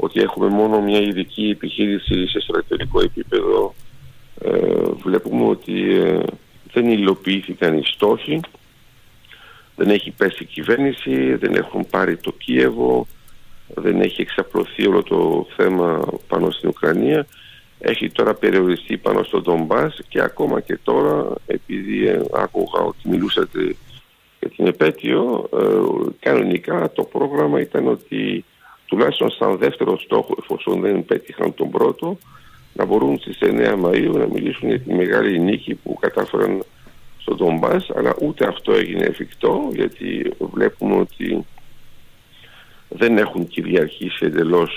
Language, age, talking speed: Greek, 50-69, 125 wpm